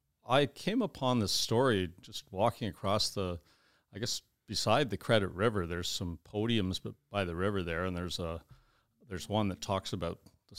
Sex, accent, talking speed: male, American, 175 wpm